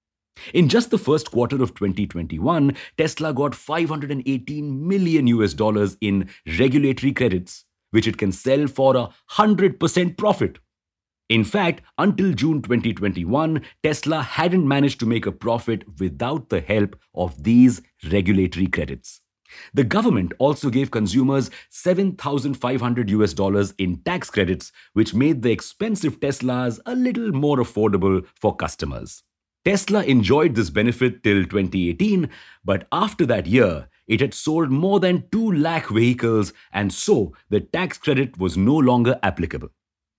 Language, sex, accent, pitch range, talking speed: English, male, Indian, 105-150 Hz, 135 wpm